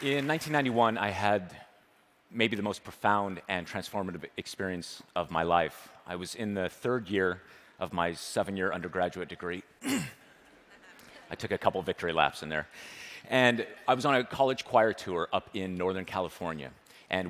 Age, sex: 30-49, male